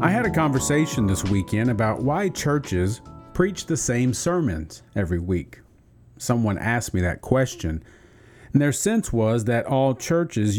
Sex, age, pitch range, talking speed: male, 40-59, 105-135 Hz, 155 wpm